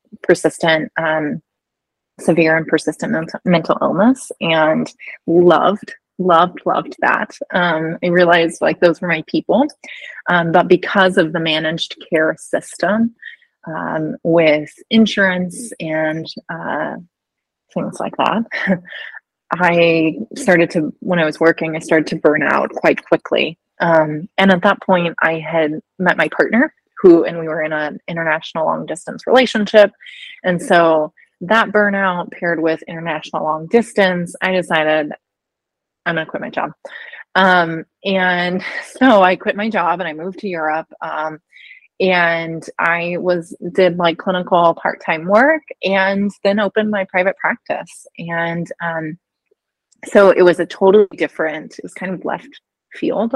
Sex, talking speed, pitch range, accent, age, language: female, 145 wpm, 165-205 Hz, American, 20-39, English